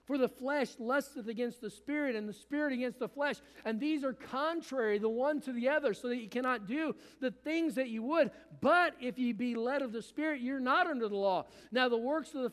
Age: 50-69